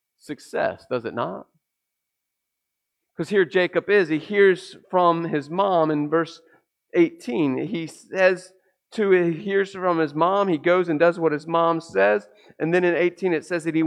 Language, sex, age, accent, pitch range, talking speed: English, male, 40-59, American, 145-190 Hz, 175 wpm